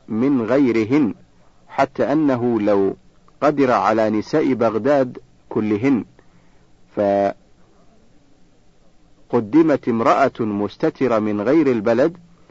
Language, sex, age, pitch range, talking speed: Arabic, male, 50-69, 105-140 Hz, 75 wpm